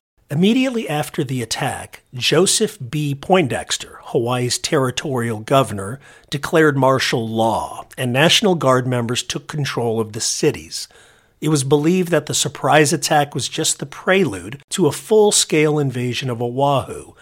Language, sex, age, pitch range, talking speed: English, male, 50-69, 120-160 Hz, 135 wpm